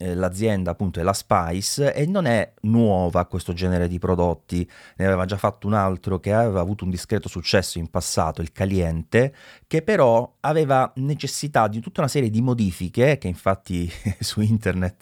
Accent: native